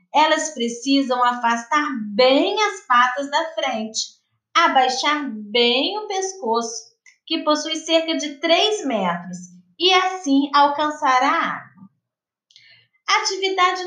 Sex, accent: female, Brazilian